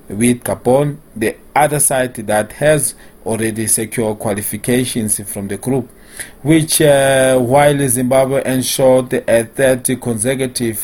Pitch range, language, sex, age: 110-135 Hz, English, male, 40-59